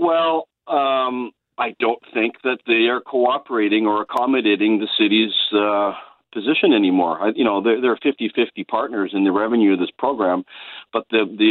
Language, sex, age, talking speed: English, male, 50-69, 165 wpm